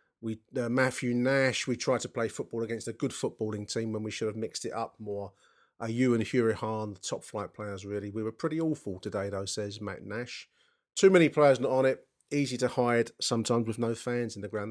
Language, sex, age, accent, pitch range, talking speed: English, male, 30-49, British, 110-125 Hz, 230 wpm